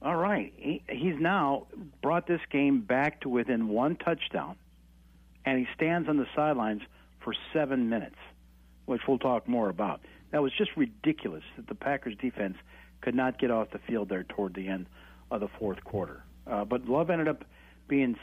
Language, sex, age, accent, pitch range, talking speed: English, male, 60-79, American, 100-150 Hz, 180 wpm